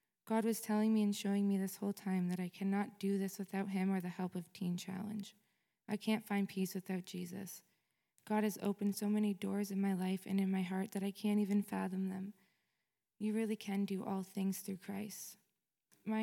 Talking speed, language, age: 210 wpm, English, 20-39